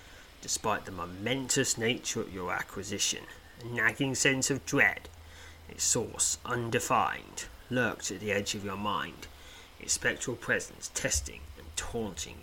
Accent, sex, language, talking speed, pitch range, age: British, male, English, 135 wpm, 80-120 Hz, 30-49